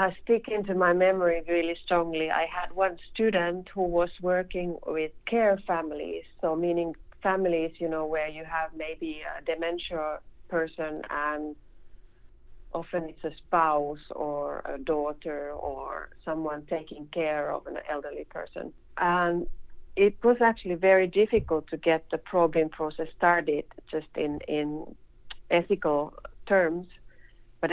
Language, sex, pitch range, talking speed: English, female, 150-175 Hz, 135 wpm